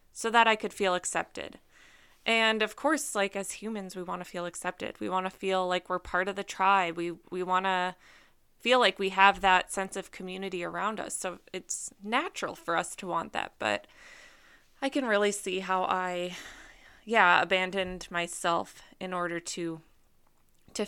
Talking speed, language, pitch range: 180 wpm, English, 175-200 Hz